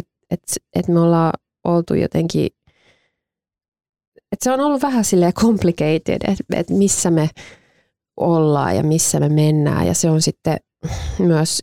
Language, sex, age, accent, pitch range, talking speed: Finnish, female, 20-39, native, 155-180 Hz, 140 wpm